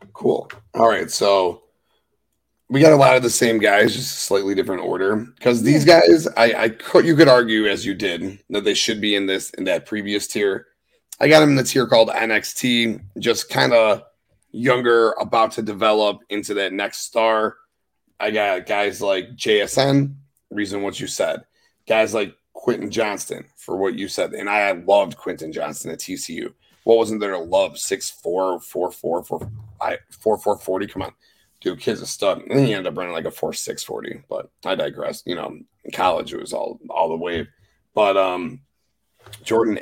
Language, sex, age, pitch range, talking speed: English, male, 30-49, 105-140 Hz, 190 wpm